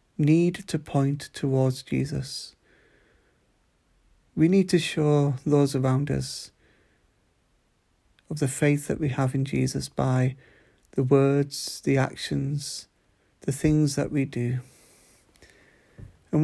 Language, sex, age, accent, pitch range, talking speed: English, male, 40-59, British, 130-150 Hz, 115 wpm